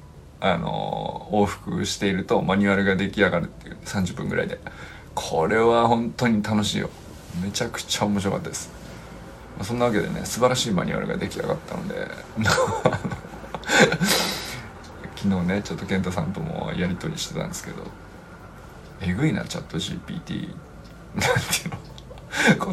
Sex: male